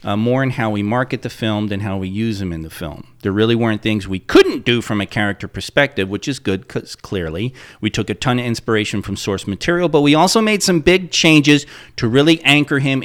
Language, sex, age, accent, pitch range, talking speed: English, male, 40-59, American, 110-145 Hz, 240 wpm